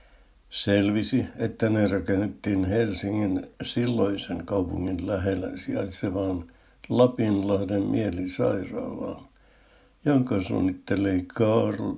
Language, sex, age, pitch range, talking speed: Finnish, male, 60-79, 95-110 Hz, 70 wpm